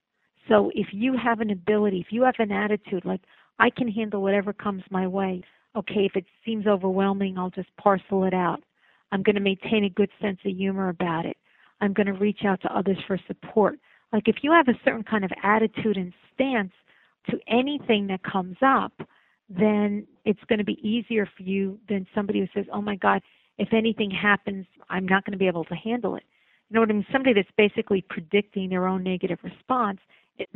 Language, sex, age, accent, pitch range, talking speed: English, female, 50-69, American, 190-215 Hz, 210 wpm